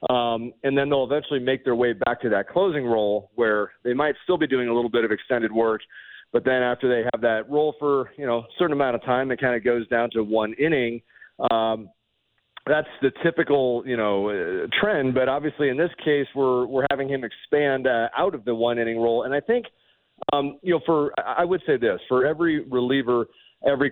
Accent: American